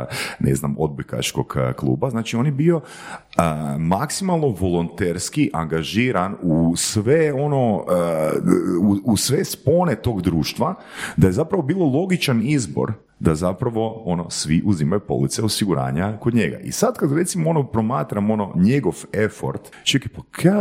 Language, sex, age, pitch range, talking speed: Croatian, male, 40-59, 80-125 Hz, 135 wpm